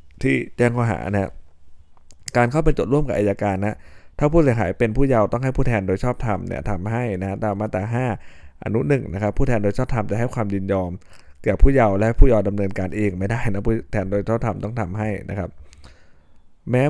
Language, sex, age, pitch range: Thai, male, 20-39, 95-120 Hz